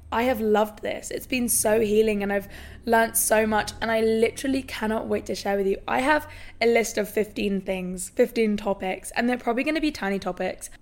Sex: female